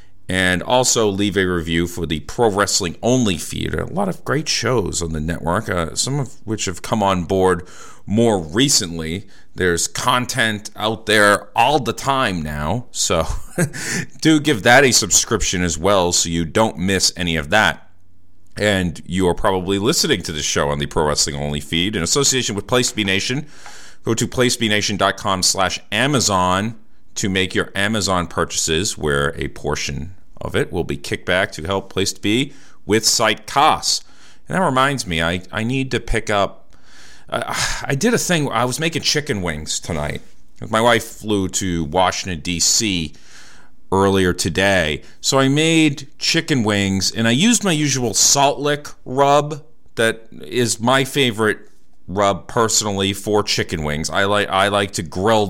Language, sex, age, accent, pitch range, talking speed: English, male, 40-59, American, 90-120 Hz, 170 wpm